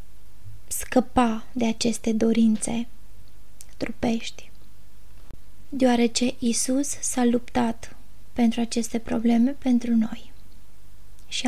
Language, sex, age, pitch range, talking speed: Romanian, female, 20-39, 230-255 Hz, 80 wpm